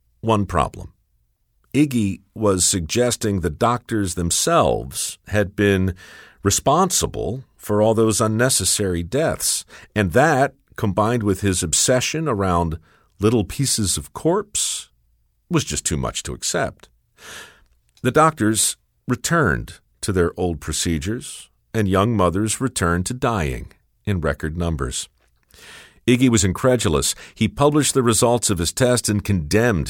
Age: 50-69